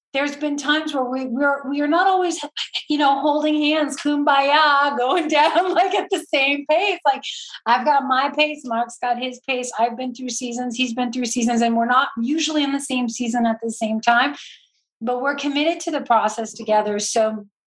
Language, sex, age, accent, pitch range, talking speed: English, female, 30-49, American, 225-280 Hz, 200 wpm